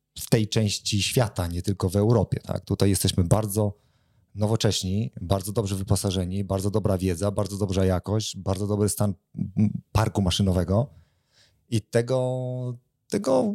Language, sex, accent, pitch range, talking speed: Polish, male, native, 95-115 Hz, 130 wpm